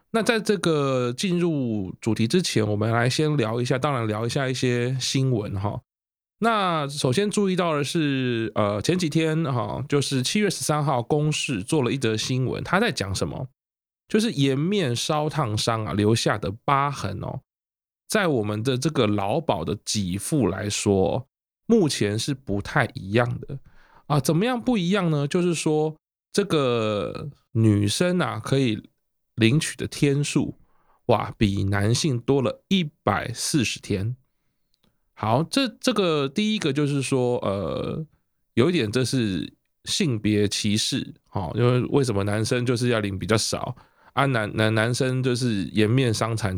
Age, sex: 20-39, male